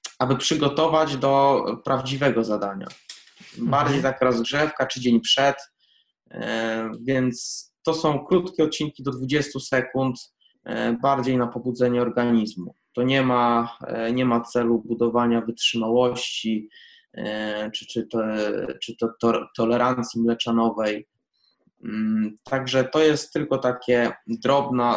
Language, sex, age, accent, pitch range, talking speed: Polish, male, 20-39, native, 115-140 Hz, 105 wpm